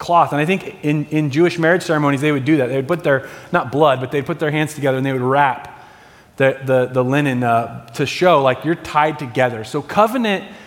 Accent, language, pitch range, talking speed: American, English, 130-165 Hz, 235 wpm